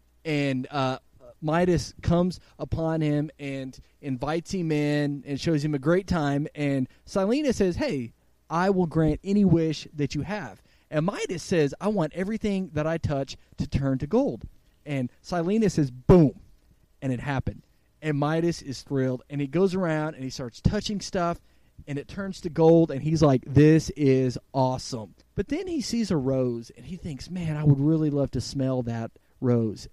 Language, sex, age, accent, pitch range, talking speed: English, male, 30-49, American, 125-175 Hz, 180 wpm